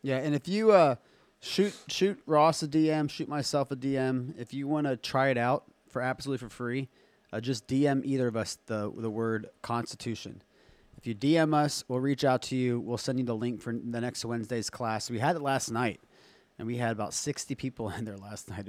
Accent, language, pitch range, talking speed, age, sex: American, English, 115-145 Hz, 220 wpm, 30-49, male